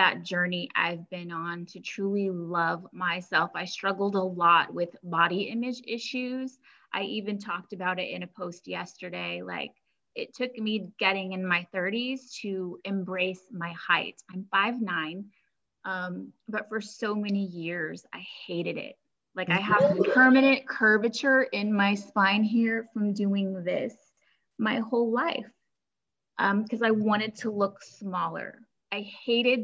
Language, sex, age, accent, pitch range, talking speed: English, female, 20-39, American, 185-225 Hz, 150 wpm